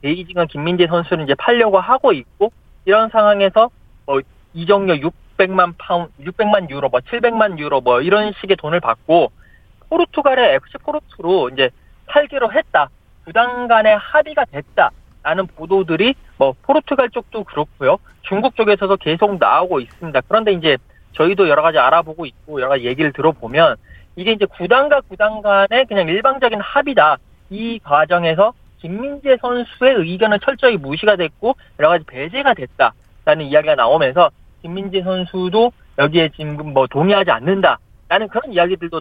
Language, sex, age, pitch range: Korean, male, 40-59, 165-230 Hz